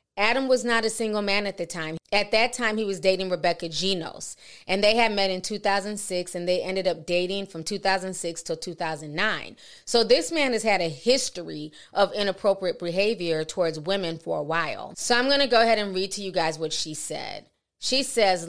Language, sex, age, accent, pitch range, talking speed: English, female, 30-49, American, 170-205 Hz, 205 wpm